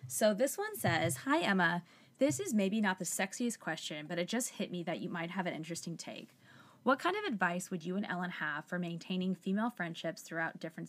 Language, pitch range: English, 165-210 Hz